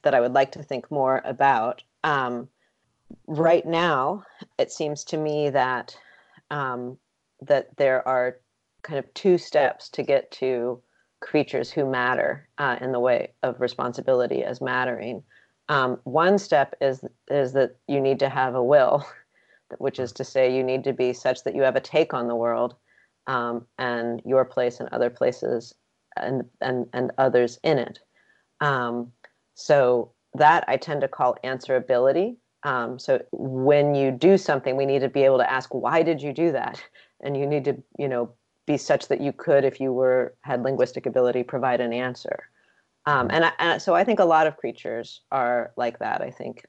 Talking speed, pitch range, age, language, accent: 185 wpm, 125-145 Hz, 40-59, English, American